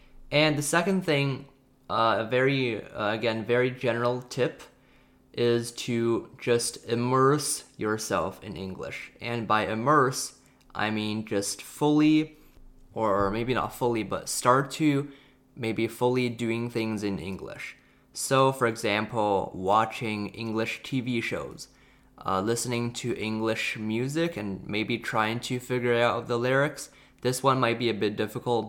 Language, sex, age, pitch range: Chinese, male, 20-39, 105-130 Hz